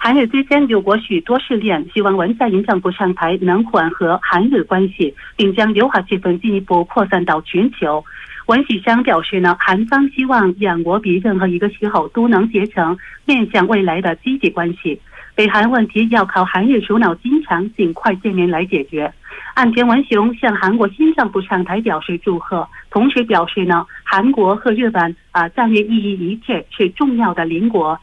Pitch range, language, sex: 180-230 Hz, Korean, female